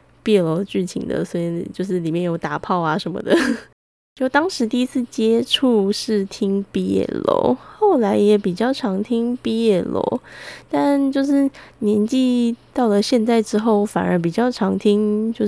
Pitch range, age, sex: 195-240 Hz, 10-29, female